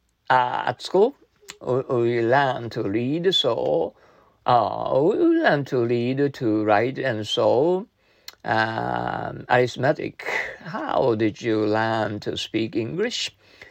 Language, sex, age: Japanese, male, 60-79